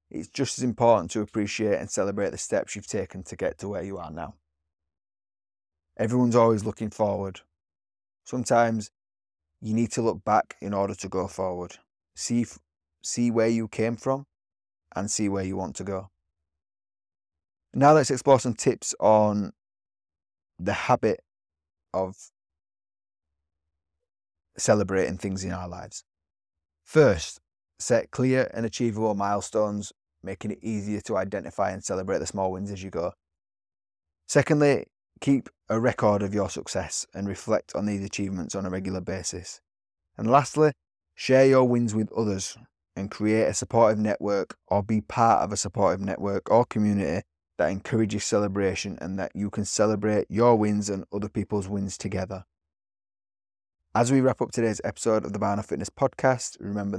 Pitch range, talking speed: 80-110 Hz, 150 wpm